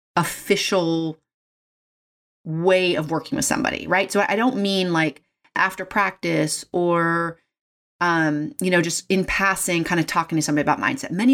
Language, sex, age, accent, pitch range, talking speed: English, female, 30-49, American, 160-210 Hz, 155 wpm